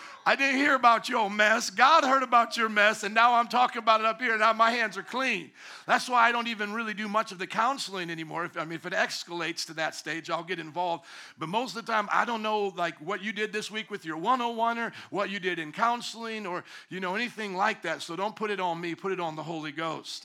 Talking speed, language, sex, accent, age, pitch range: 260 wpm, English, male, American, 50-69, 170-225 Hz